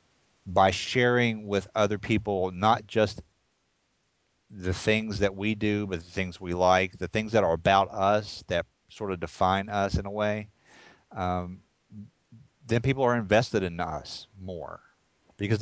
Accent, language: American, English